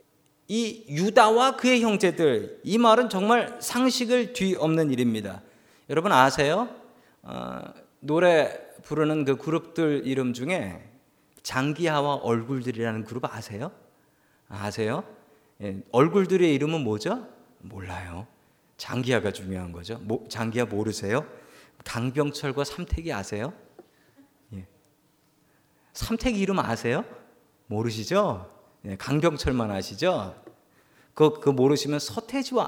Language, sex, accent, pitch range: Korean, male, native, 115-190 Hz